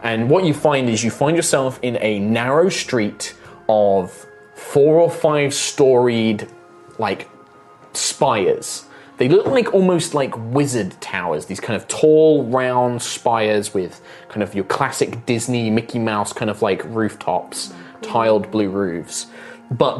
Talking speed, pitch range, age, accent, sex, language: 145 wpm, 105-140 Hz, 20-39, British, male, English